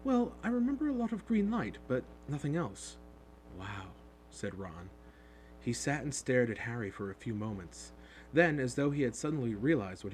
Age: 30-49